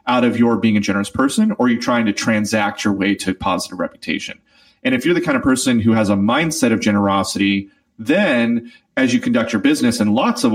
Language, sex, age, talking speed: English, male, 30-49, 220 wpm